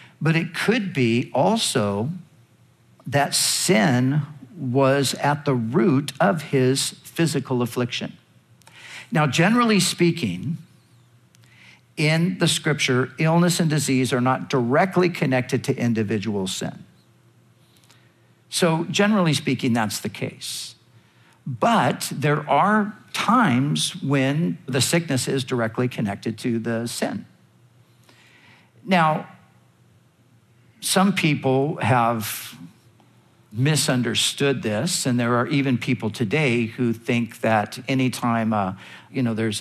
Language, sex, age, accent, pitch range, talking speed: English, male, 50-69, American, 115-145 Hz, 110 wpm